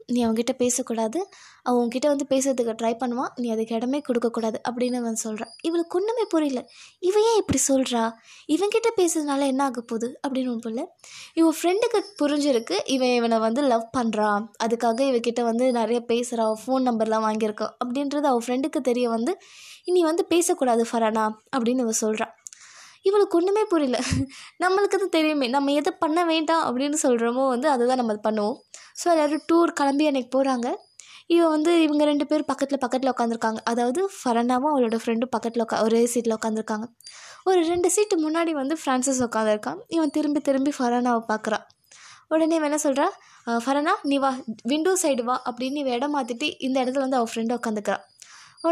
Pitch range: 235-320 Hz